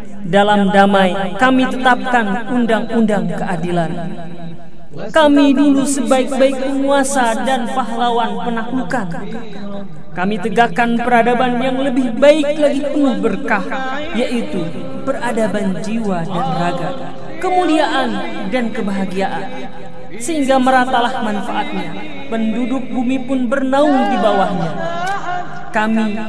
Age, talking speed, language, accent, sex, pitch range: 40-59, 90 wpm, Indonesian, native, female, 215-275 Hz